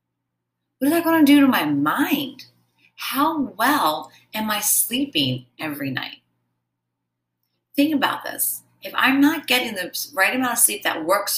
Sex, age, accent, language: female, 30-49, American, English